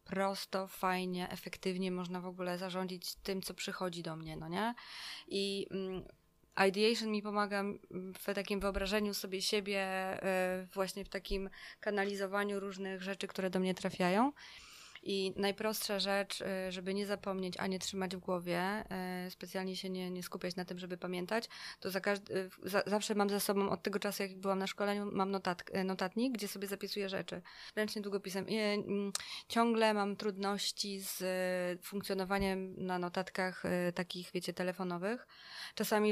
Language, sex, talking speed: Polish, female, 150 wpm